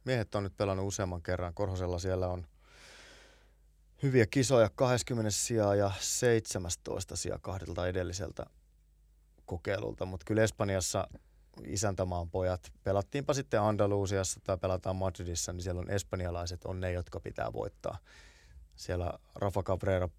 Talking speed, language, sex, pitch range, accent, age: 125 wpm, Finnish, male, 90-110 Hz, native, 20-39